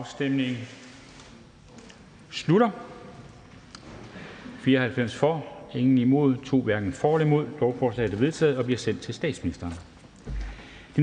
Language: Danish